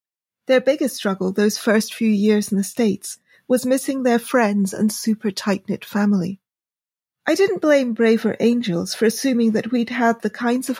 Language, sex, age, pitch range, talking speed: English, female, 40-59, 205-250 Hz, 170 wpm